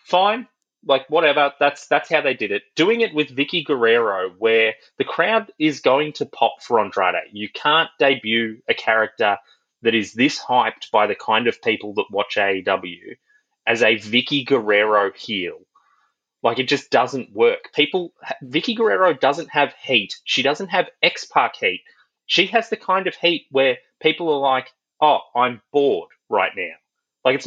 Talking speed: 175 wpm